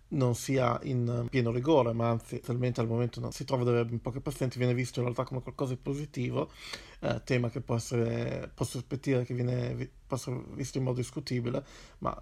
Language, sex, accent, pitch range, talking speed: Italian, male, native, 115-130 Hz, 190 wpm